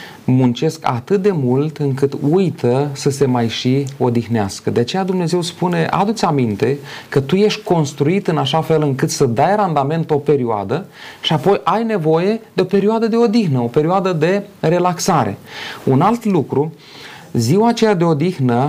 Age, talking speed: 30-49, 165 wpm